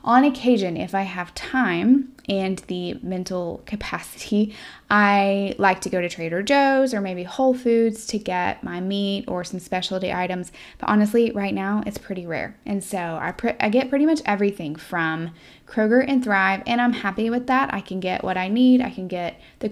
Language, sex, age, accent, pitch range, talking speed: English, female, 10-29, American, 185-225 Hz, 190 wpm